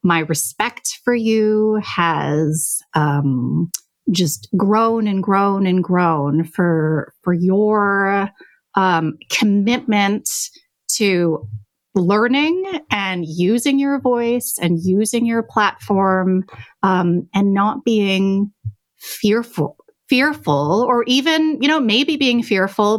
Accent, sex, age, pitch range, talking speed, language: American, female, 30-49, 175-230 Hz, 105 wpm, English